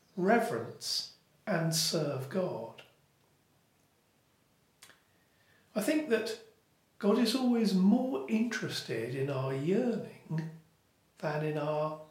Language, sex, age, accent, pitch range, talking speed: English, male, 50-69, British, 135-190 Hz, 90 wpm